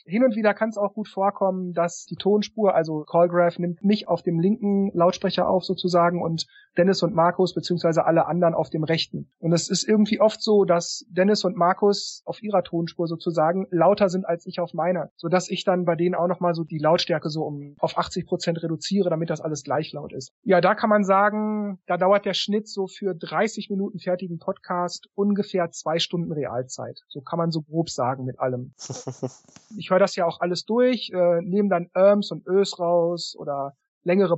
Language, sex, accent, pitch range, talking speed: German, male, German, 165-190 Hz, 200 wpm